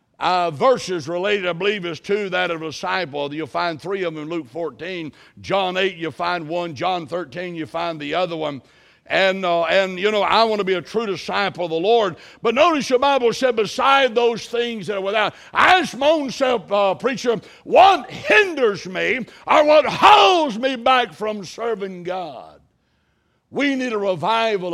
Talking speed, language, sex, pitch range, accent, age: 190 wpm, English, male, 165-240 Hz, American, 60-79